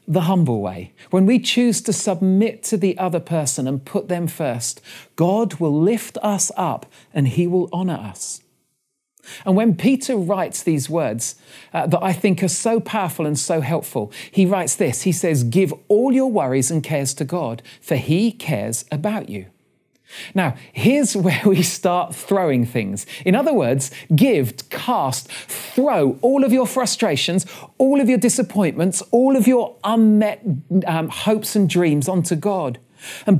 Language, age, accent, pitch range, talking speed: English, 40-59, British, 155-215 Hz, 165 wpm